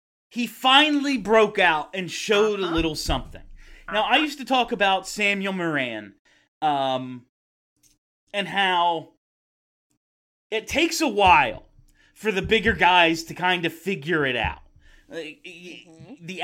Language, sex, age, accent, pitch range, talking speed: English, male, 30-49, American, 155-225 Hz, 130 wpm